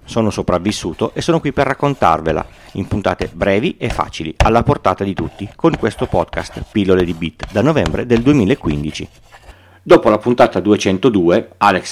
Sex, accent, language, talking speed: male, native, Italian, 155 wpm